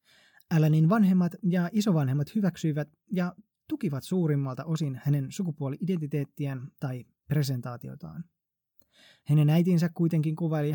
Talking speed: 95 wpm